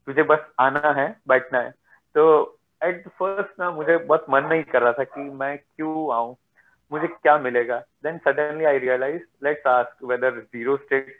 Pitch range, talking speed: 135-165 Hz, 165 wpm